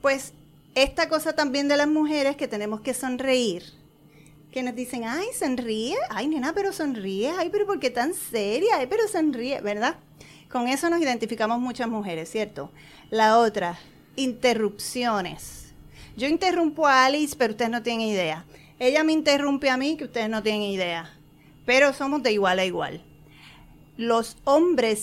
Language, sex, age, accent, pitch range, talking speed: Spanish, female, 30-49, American, 200-275 Hz, 160 wpm